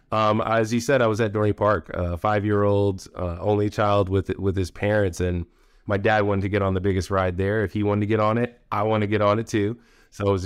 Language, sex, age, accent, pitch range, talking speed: English, male, 30-49, American, 90-110 Hz, 270 wpm